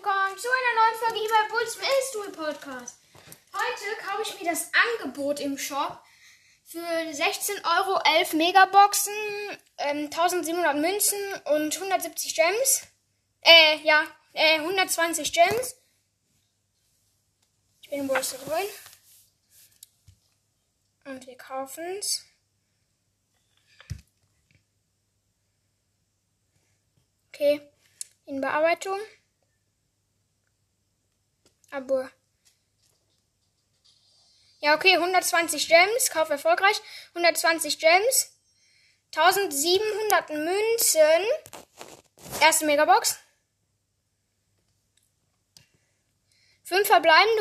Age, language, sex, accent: 10-29, German, female, German